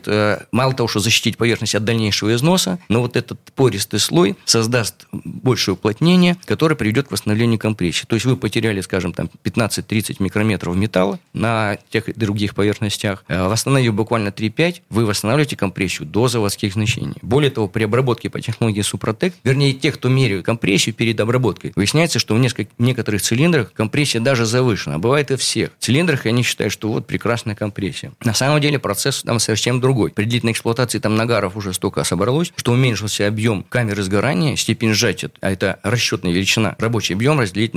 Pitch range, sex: 105-130 Hz, male